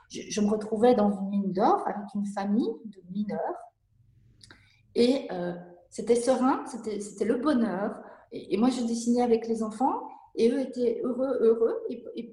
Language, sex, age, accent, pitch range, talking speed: French, female, 30-49, French, 190-250 Hz, 170 wpm